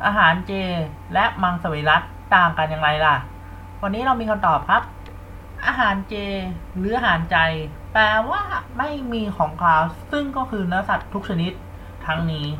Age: 20-39